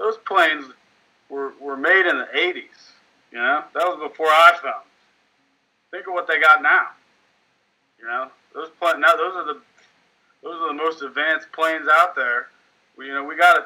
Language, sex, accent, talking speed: English, male, American, 190 wpm